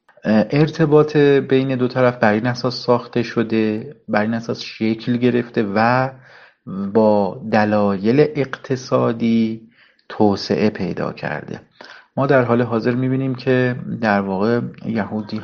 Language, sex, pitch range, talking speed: Persian, male, 105-125 Hz, 115 wpm